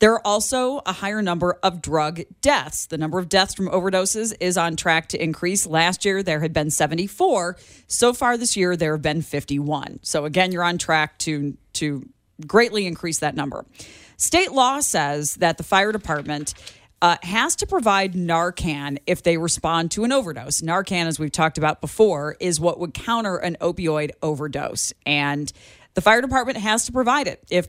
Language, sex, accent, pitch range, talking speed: English, female, American, 155-215 Hz, 185 wpm